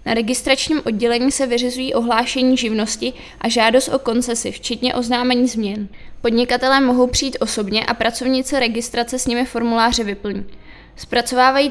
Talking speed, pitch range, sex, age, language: 135 wpm, 230-255 Hz, female, 20-39, Czech